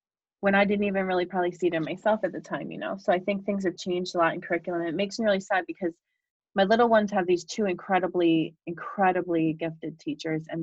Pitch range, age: 160-195 Hz, 30-49